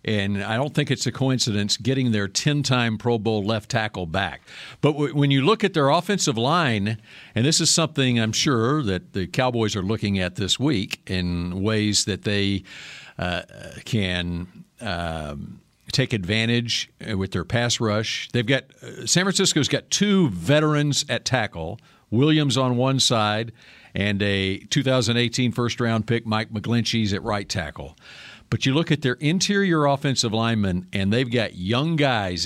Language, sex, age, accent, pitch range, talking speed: English, male, 50-69, American, 100-135 Hz, 160 wpm